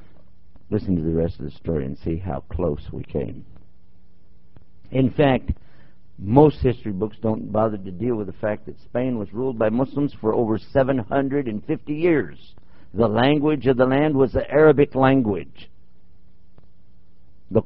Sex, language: male, English